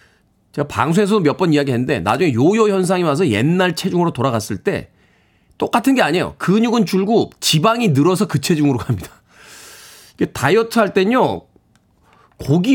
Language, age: Korean, 40-59